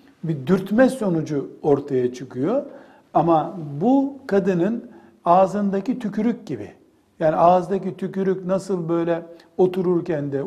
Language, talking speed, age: Turkish, 105 wpm, 60-79